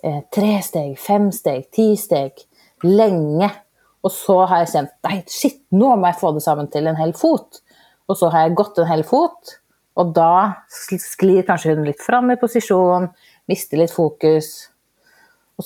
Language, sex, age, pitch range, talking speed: Swedish, female, 30-49, 165-210 Hz, 155 wpm